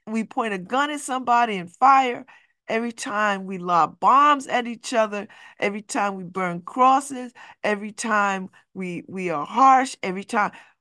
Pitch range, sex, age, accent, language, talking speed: 195-285 Hz, female, 50-69, American, English, 160 wpm